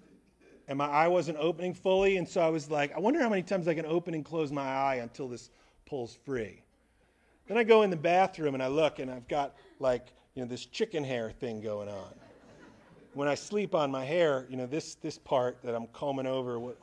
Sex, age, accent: male, 40-59, American